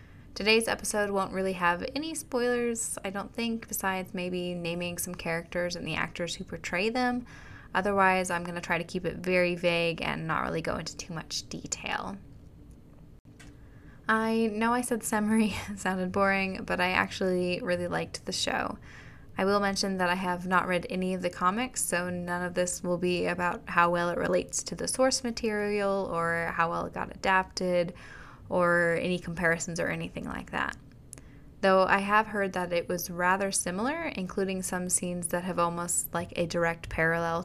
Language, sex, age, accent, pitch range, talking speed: English, female, 10-29, American, 170-195 Hz, 180 wpm